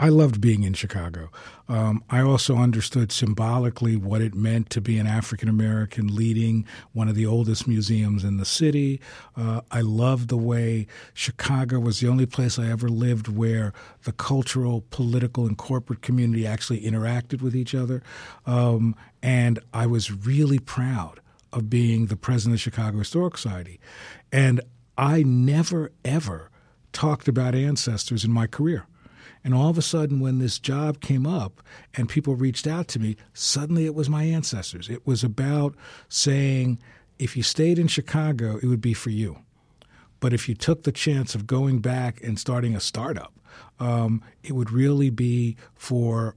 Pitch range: 115-135 Hz